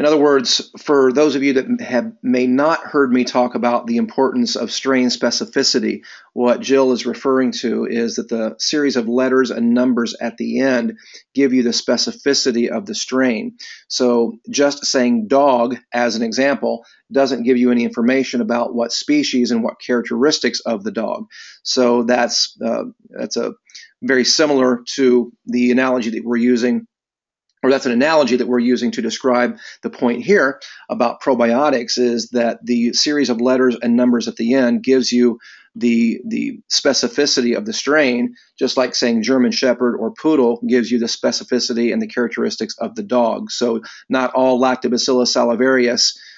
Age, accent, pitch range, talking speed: 40-59, American, 120-130 Hz, 170 wpm